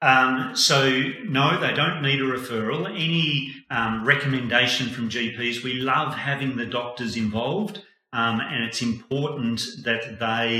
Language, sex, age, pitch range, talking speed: English, male, 40-59, 110-135 Hz, 140 wpm